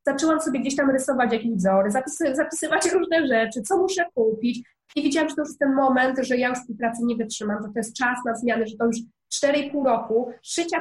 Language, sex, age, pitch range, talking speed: Polish, female, 20-39, 230-275 Hz, 220 wpm